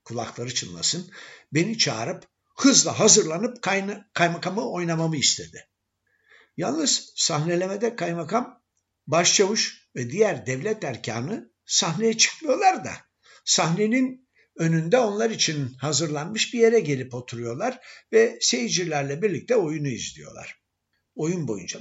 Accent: native